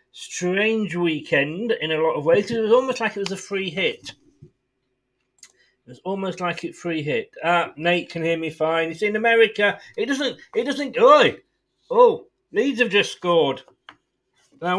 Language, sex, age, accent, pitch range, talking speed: English, male, 40-59, British, 160-235 Hz, 175 wpm